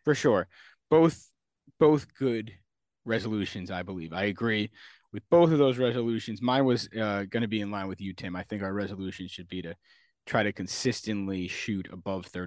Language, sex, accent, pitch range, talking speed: English, male, American, 95-120 Hz, 185 wpm